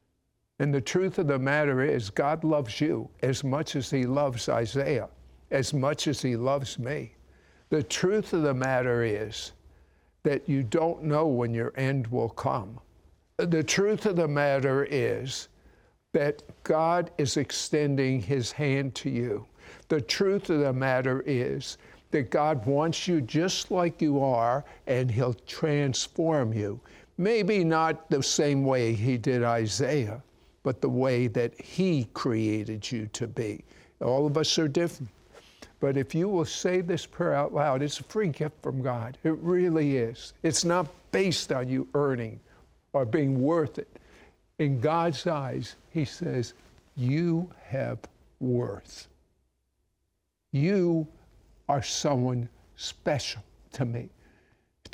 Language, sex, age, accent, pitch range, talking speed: English, male, 60-79, American, 120-160 Hz, 145 wpm